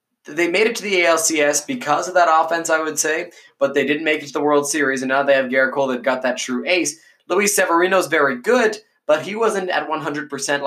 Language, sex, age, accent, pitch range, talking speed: English, male, 20-39, American, 130-160 Hz, 235 wpm